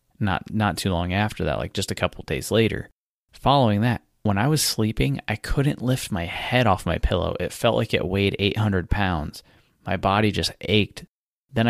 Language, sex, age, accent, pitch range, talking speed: English, male, 20-39, American, 90-110 Hz, 200 wpm